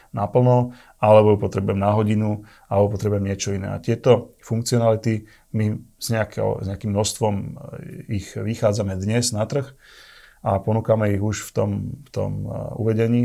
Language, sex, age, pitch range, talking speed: Slovak, male, 30-49, 100-115 Hz, 135 wpm